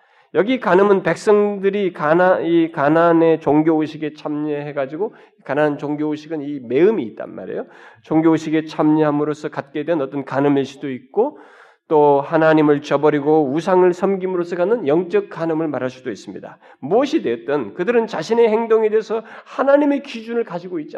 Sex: male